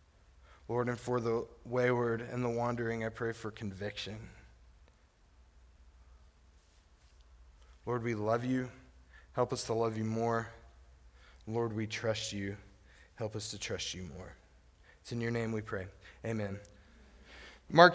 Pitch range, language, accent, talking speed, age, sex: 110-155 Hz, English, American, 135 wpm, 20-39, male